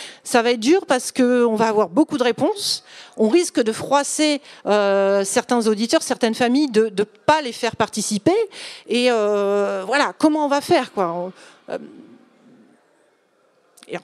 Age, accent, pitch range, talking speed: 40-59, French, 210-285 Hz, 155 wpm